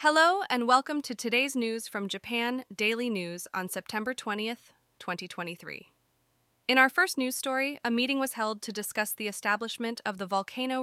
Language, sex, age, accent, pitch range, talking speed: English, female, 20-39, American, 185-235 Hz, 165 wpm